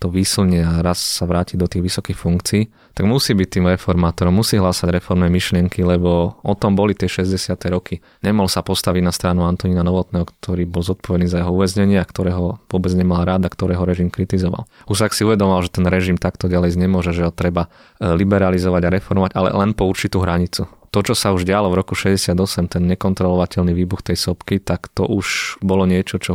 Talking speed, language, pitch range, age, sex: 195 wpm, Slovak, 90-100 Hz, 20-39, male